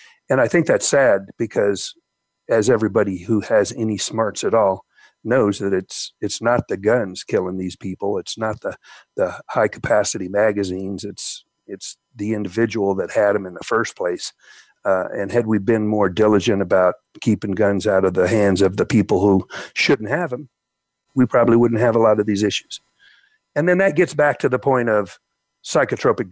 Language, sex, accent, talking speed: English, male, American, 185 wpm